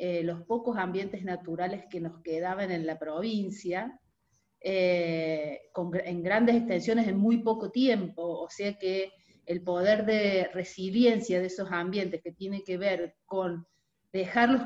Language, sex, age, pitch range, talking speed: Spanish, female, 30-49, 175-225 Hz, 145 wpm